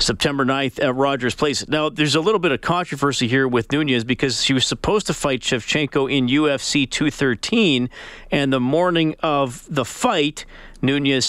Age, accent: 40-59, American